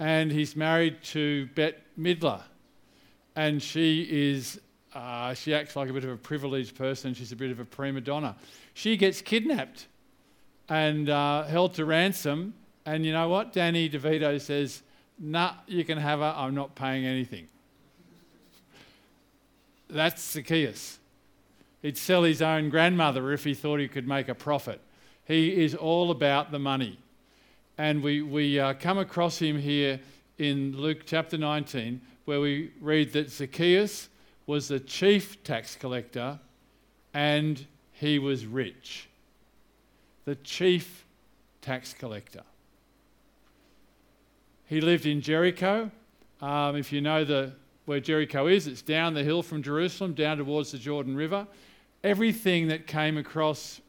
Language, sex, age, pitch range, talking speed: English, male, 50-69, 140-160 Hz, 140 wpm